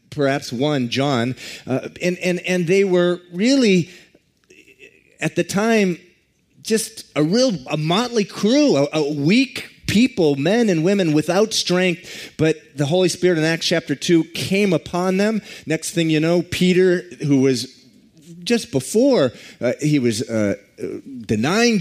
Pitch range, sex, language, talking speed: 140-185 Hz, male, English, 145 wpm